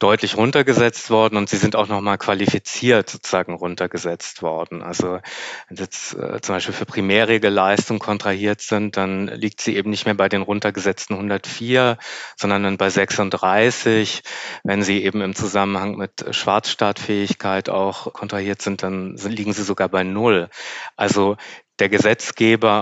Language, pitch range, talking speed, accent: German, 100-115 Hz, 145 wpm, German